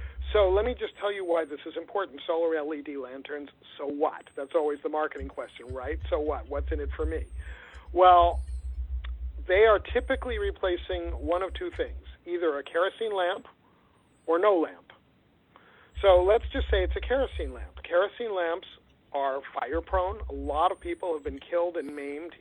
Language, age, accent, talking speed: English, 50-69, American, 175 wpm